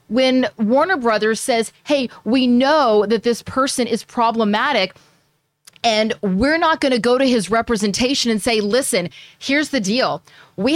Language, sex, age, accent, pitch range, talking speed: English, female, 30-49, American, 225-295 Hz, 155 wpm